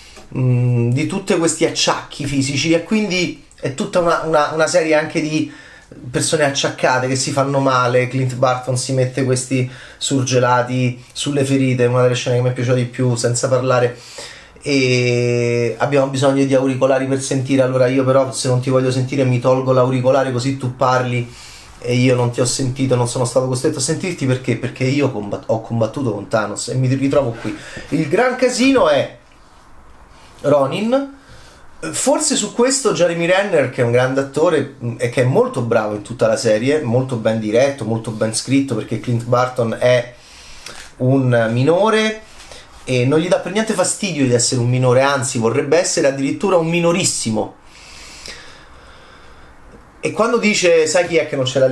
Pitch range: 120-145 Hz